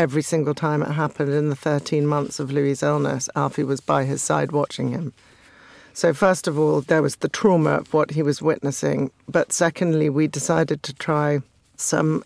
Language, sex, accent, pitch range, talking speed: English, female, British, 140-155 Hz, 190 wpm